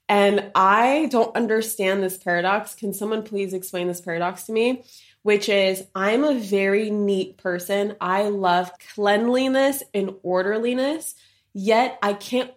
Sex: female